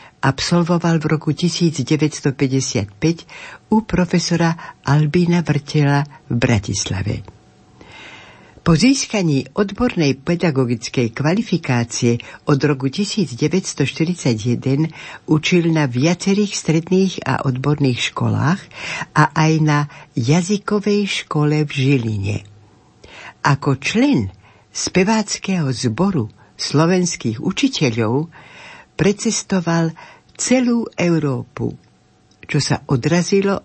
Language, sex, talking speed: Slovak, female, 80 wpm